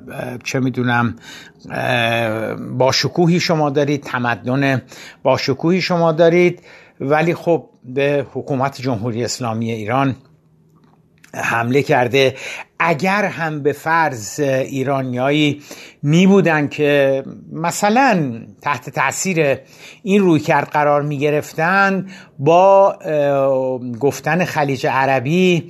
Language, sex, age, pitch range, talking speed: Persian, male, 60-79, 130-170 Hz, 90 wpm